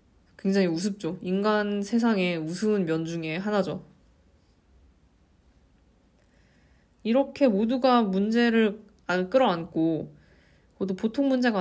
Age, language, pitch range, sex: 20-39, Korean, 165-220 Hz, female